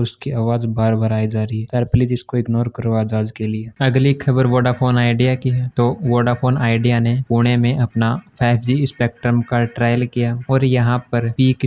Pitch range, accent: 115-125 Hz, native